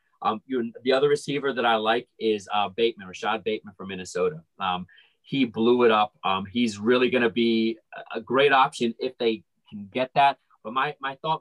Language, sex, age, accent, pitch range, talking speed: English, male, 30-49, American, 115-140 Hz, 205 wpm